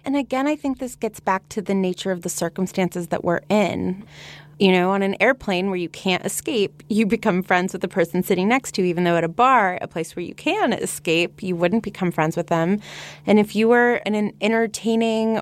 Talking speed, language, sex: 230 wpm, English, female